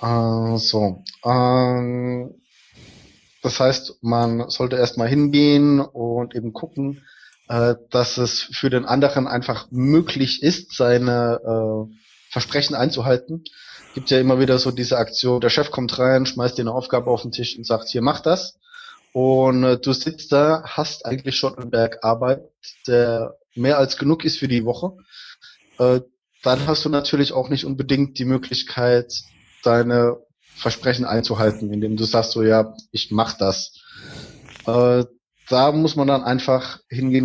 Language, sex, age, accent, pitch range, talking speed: German, male, 20-39, German, 120-145 Hz, 155 wpm